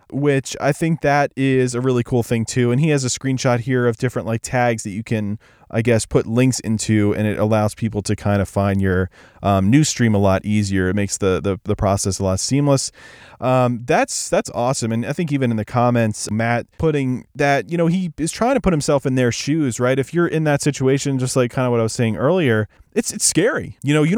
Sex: male